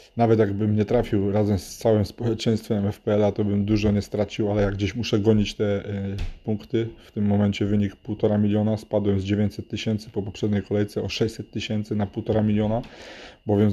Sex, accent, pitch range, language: male, native, 100-110 Hz, Polish